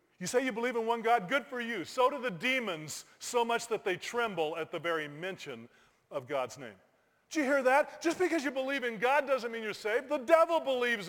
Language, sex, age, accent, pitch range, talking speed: English, male, 40-59, American, 165-260 Hz, 235 wpm